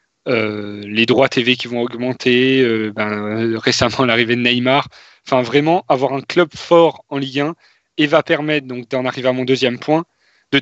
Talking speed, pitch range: 185 wpm, 120-150 Hz